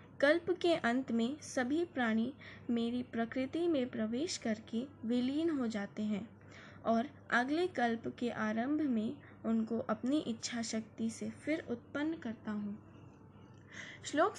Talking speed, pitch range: 130 wpm, 230-265 Hz